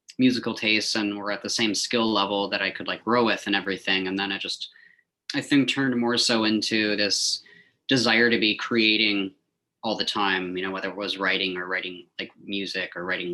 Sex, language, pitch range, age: male, English, 95-115 Hz, 20-39